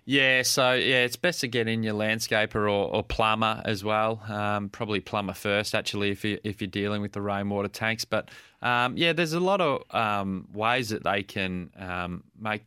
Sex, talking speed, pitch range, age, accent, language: male, 205 wpm, 95-110 Hz, 20-39, Australian, English